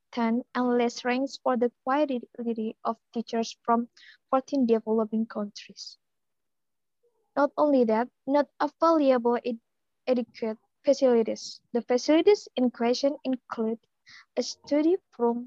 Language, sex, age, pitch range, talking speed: English, female, 20-39, 230-280 Hz, 105 wpm